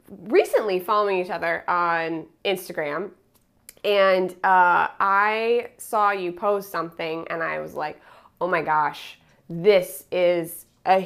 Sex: female